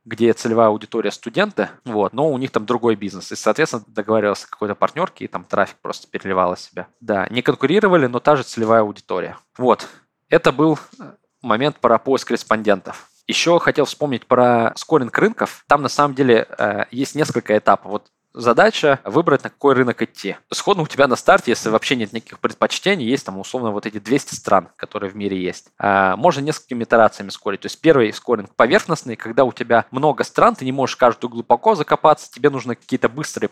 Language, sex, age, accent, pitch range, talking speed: Russian, male, 20-39, native, 105-140 Hz, 180 wpm